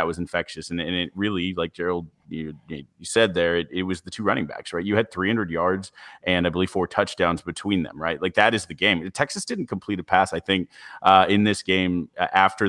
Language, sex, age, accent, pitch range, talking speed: English, male, 30-49, American, 85-105 Hz, 235 wpm